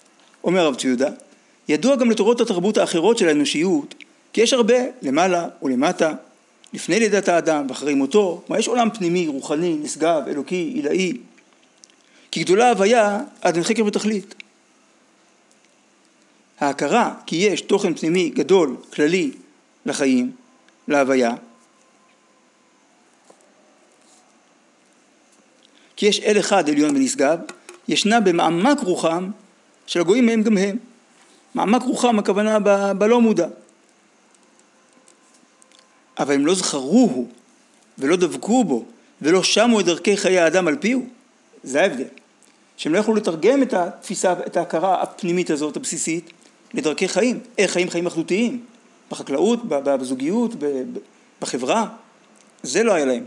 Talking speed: 120 wpm